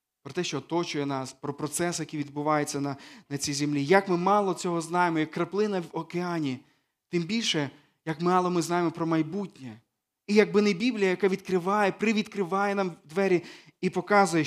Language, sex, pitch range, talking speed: Ukrainian, male, 150-190 Hz, 170 wpm